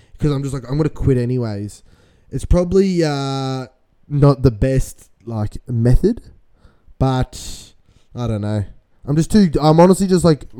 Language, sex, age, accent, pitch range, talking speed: English, male, 20-39, Australian, 115-145 Hz, 160 wpm